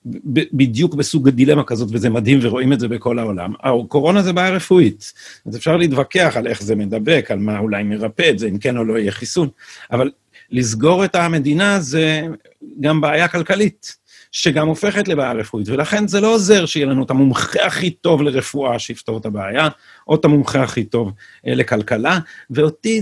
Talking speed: 175 wpm